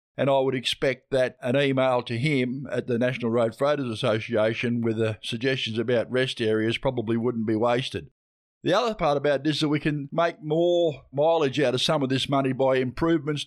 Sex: male